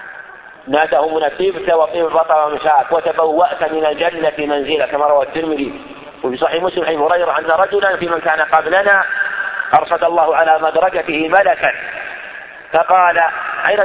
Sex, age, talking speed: male, 50-69, 125 wpm